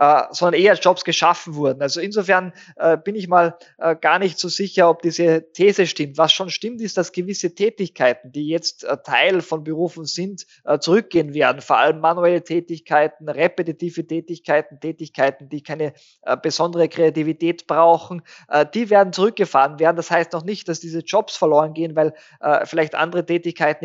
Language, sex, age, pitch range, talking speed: German, male, 20-39, 155-180 Hz, 155 wpm